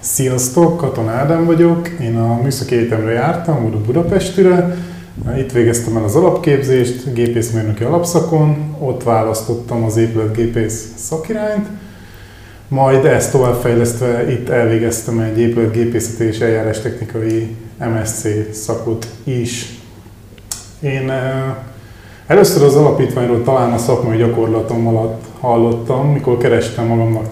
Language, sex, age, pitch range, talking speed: Hungarian, male, 20-39, 115-135 Hz, 110 wpm